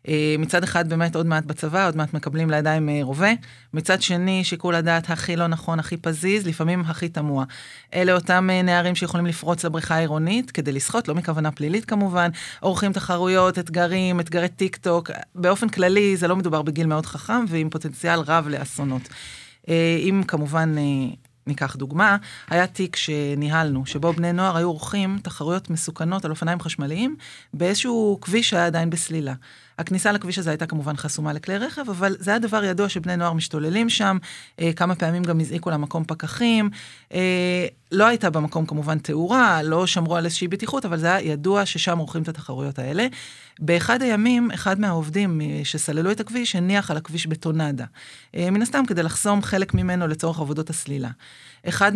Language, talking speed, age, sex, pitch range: Hebrew, 160 wpm, 30-49, female, 155-185 Hz